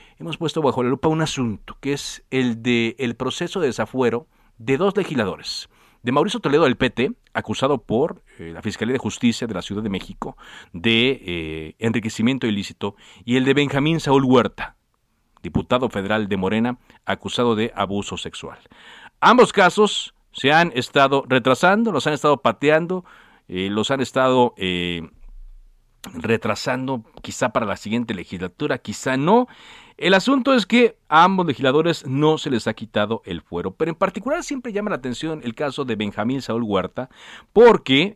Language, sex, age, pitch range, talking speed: Spanish, male, 50-69, 105-150 Hz, 165 wpm